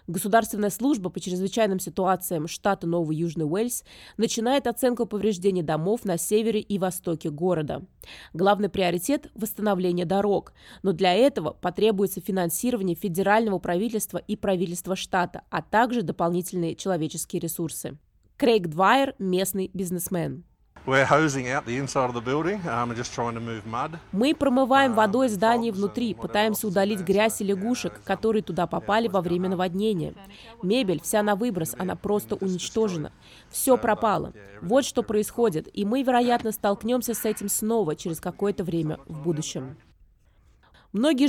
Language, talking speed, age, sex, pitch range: Russian, 120 wpm, 20-39, female, 180-225 Hz